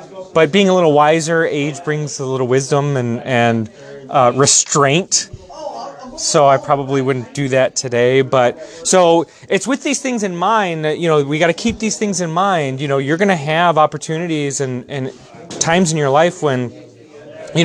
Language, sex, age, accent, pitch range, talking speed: English, male, 30-49, American, 135-175 Hz, 185 wpm